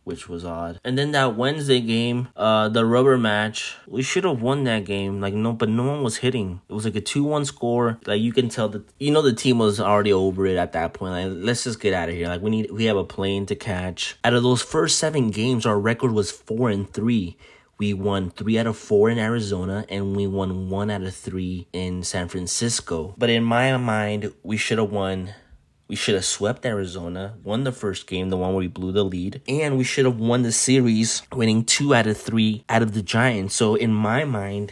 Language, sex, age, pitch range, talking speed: English, male, 20-39, 100-130 Hz, 235 wpm